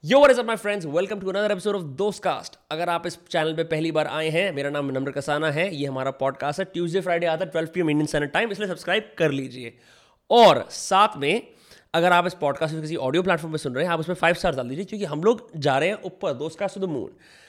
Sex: male